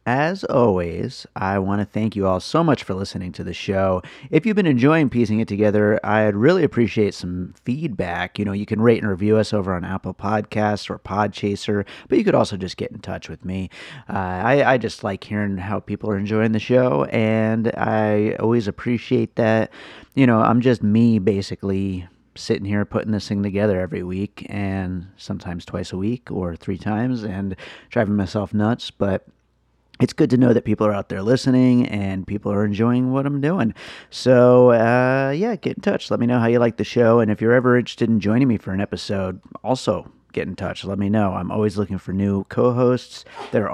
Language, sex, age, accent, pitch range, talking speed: English, male, 30-49, American, 95-120 Hz, 205 wpm